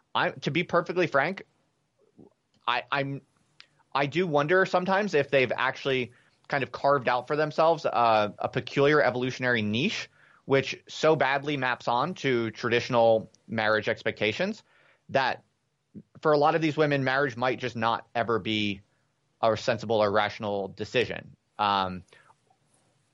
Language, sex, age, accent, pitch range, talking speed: English, male, 30-49, American, 115-140 Hz, 135 wpm